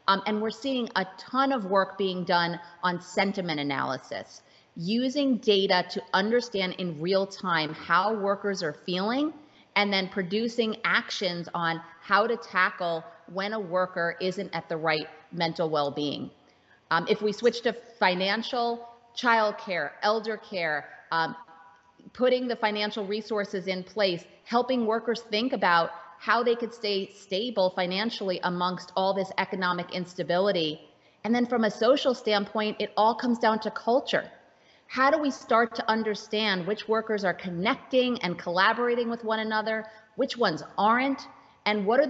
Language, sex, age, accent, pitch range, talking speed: English, female, 30-49, American, 180-225 Hz, 150 wpm